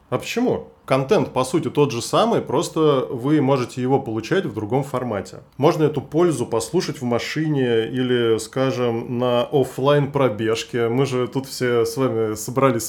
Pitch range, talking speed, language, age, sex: 120-150 Hz, 160 wpm, Russian, 20-39, male